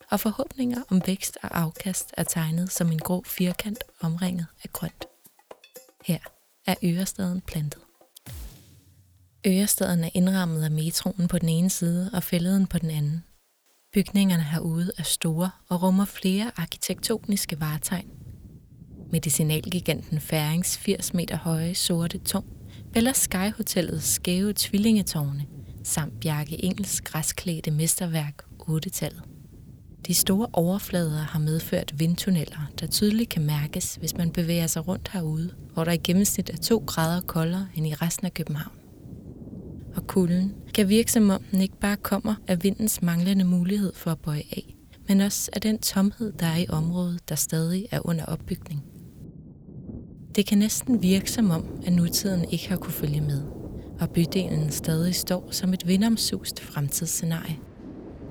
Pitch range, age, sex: 160-195 Hz, 20-39, female